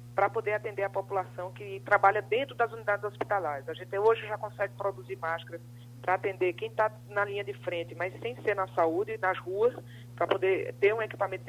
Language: Portuguese